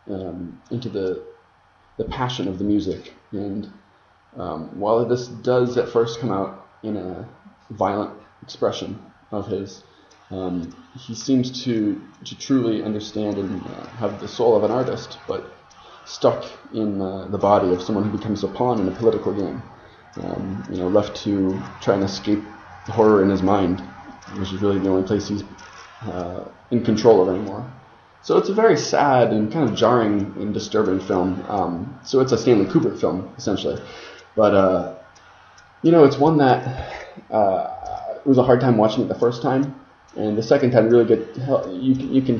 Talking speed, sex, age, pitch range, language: 180 wpm, male, 20-39, 95-125 Hz, English